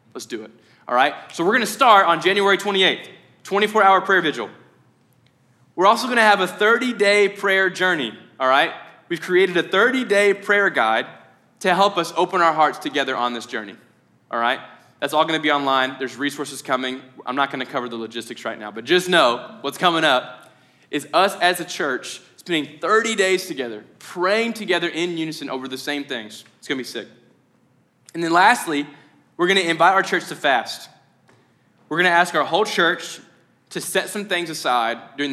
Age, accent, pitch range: 20-39, American, 125-185 Hz